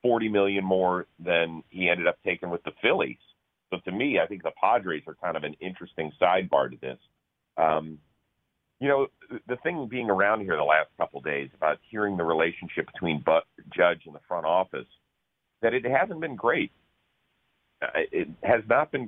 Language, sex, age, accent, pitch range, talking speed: English, male, 40-59, American, 80-105 Hz, 185 wpm